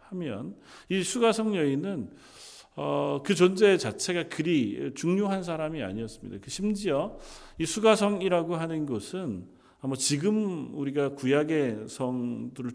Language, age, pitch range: Korean, 40-59, 130-195 Hz